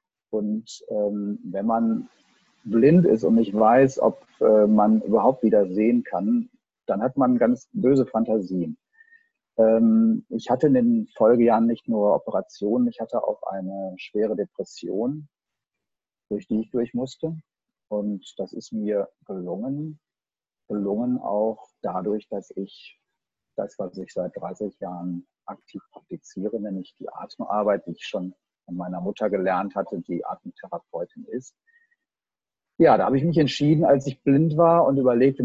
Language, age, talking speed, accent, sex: German, 40-59, 145 wpm, German, male